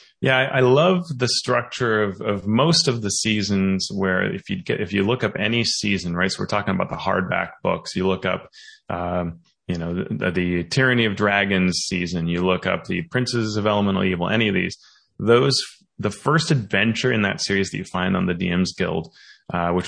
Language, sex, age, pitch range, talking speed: English, male, 30-49, 95-115 Hz, 210 wpm